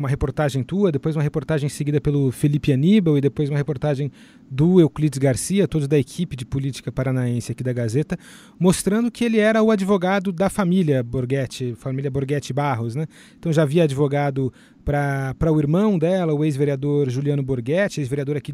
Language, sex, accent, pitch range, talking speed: Portuguese, male, Brazilian, 140-170 Hz, 170 wpm